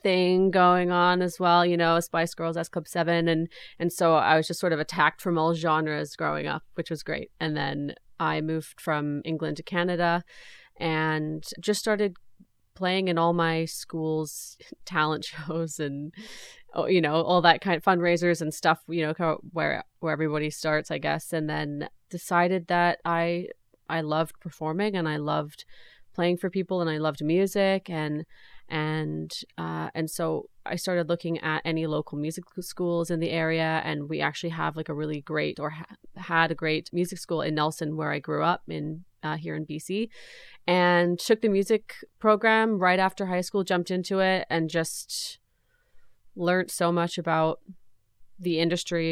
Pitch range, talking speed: 155-180 Hz, 175 wpm